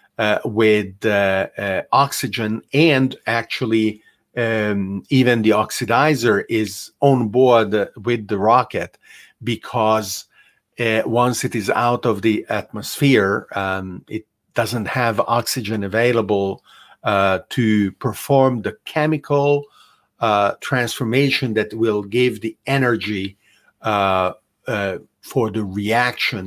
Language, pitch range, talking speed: English, 110-130 Hz, 115 wpm